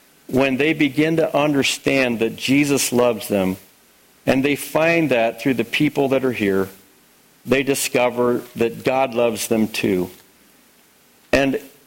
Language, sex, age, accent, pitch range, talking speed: English, male, 50-69, American, 120-150 Hz, 135 wpm